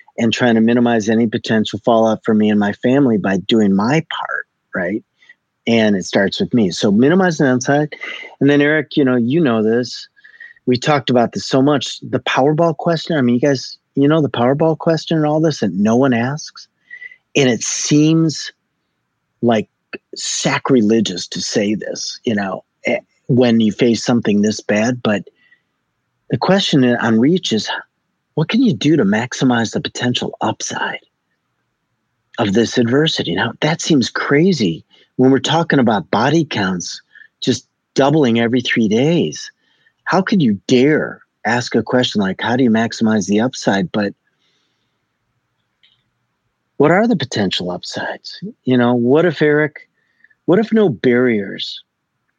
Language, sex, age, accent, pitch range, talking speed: English, male, 40-59, American, 115-170 Hz, 155 wpm